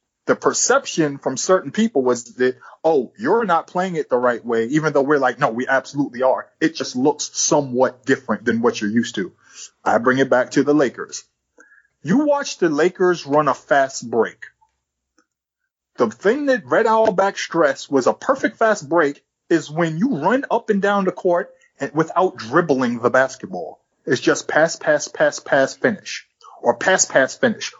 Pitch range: 130-195 Hz